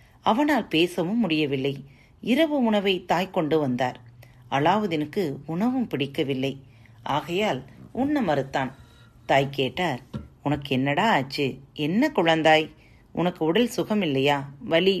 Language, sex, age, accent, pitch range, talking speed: Tamil, female, 40-59, native, 135-200 Hz, 90 wpm